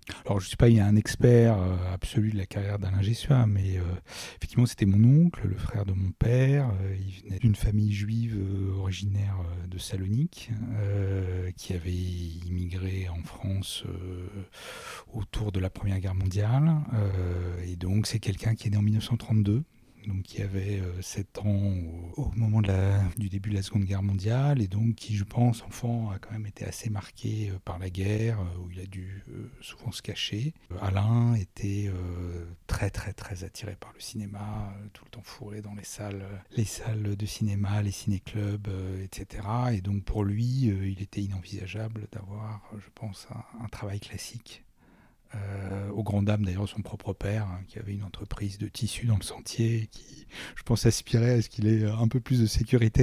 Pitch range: 95-115 Hz